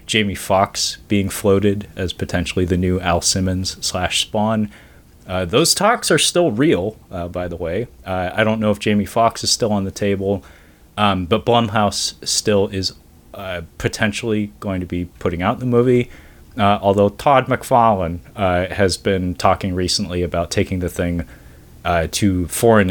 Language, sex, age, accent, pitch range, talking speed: English, male, 30-49, American, 90-110 Hz, 170 wpm